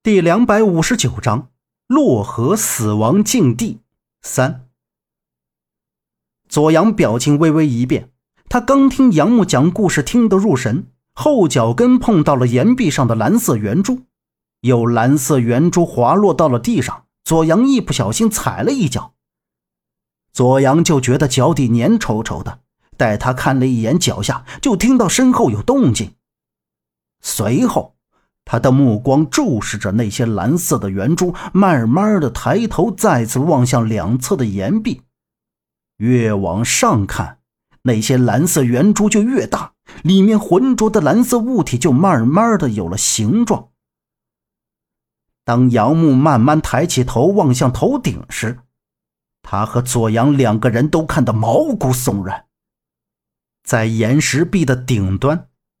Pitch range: 115-180 Hz